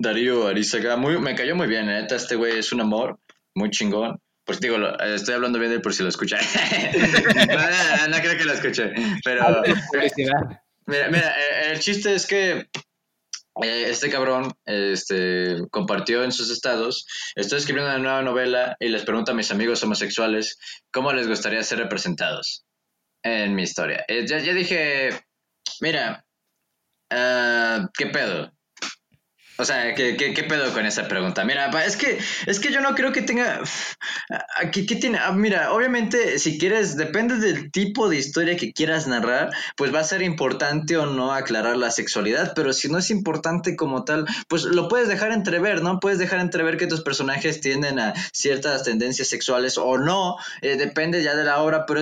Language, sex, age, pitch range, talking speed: English, male, 20-39, 125-195 Hz, 180 wpm